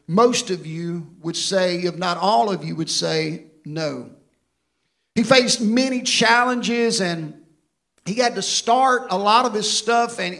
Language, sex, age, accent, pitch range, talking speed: English, male, 50-69, American, 175-215 Hz, 160 wpm